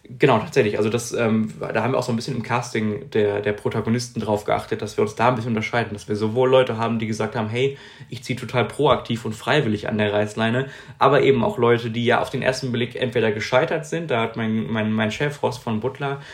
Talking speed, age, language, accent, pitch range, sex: 240 wpm, 20-39, German, German, 110-130 Hz, male